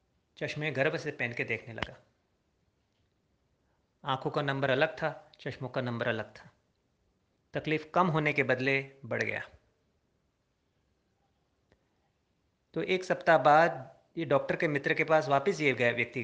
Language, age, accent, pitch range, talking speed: Hindi, 30-49, native, 135-170 Hz, 135 wpm